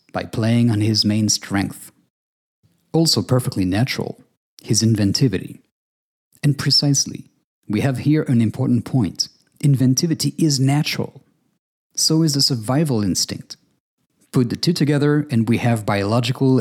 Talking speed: 125 wpm